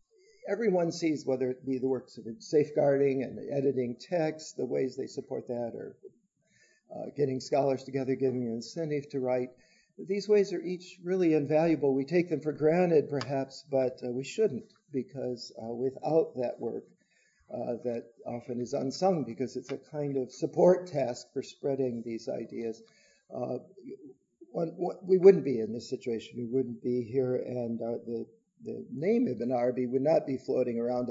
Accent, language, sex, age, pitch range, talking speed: American, English, male, 50-69, 125-165 Hz, 165 wpm